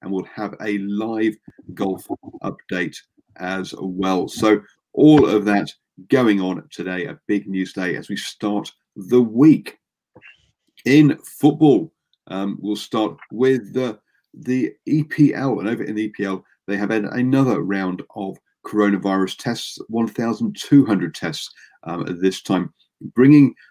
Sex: male